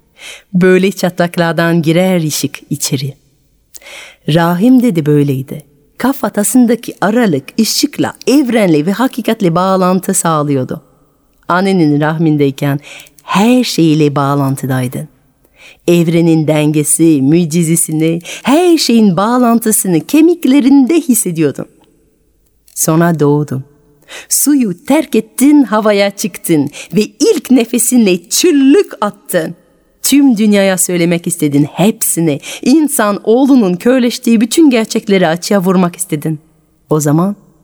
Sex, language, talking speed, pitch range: female, Turkish, 90 wpm, 150-220 Hz